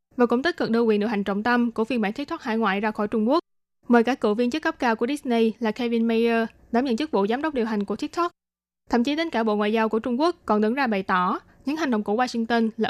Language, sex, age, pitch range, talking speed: Vietnamese, female, 20-39, 215-270 Hz, 295 wpm